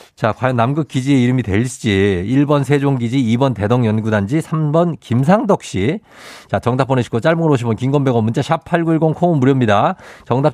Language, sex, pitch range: Korean, male, 110-160 Hz